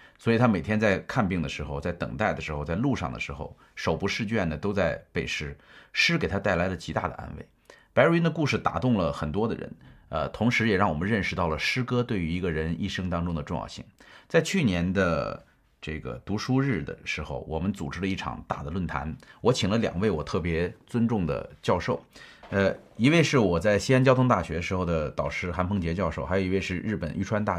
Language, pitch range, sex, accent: Chinese, 85-125 Hz, male, native